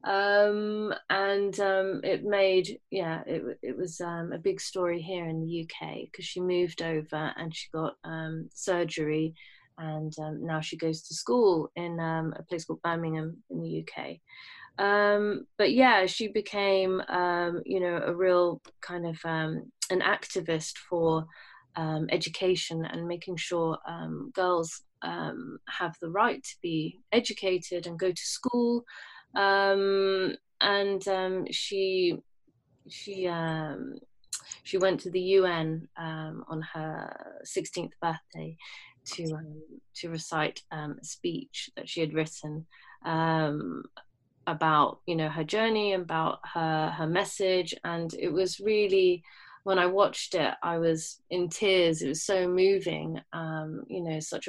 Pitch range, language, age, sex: 160-190 Hz, English, 30-49, female